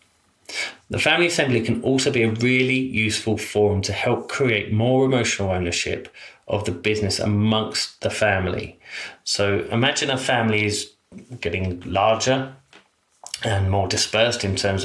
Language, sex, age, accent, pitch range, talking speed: English, male, 30-49, British, 95-115 Hz, 135 wpm